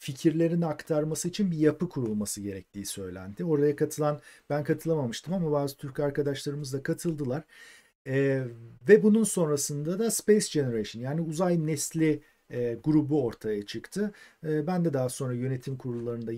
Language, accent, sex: Turkish, native, male